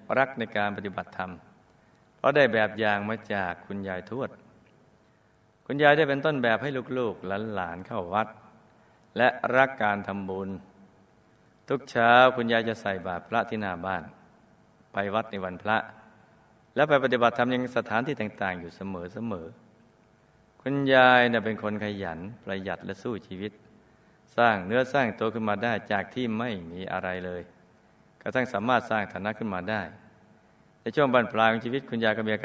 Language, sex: Thai, male